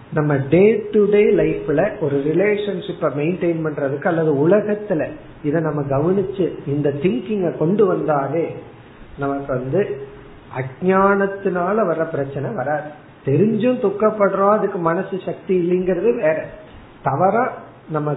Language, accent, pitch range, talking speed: Tamil, native, 150-205 Hz, 55 wpm